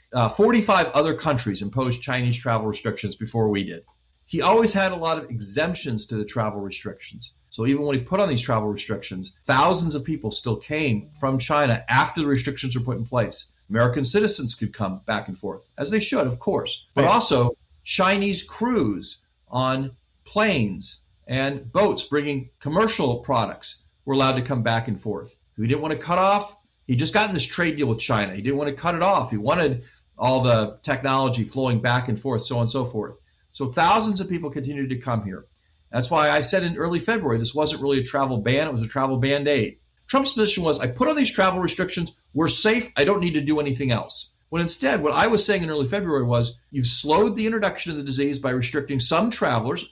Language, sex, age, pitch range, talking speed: English, male, 50-69, 115-170 Hz, 215 wpm